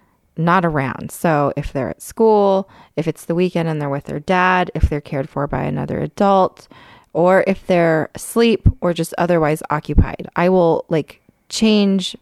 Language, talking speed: English, 170 wpm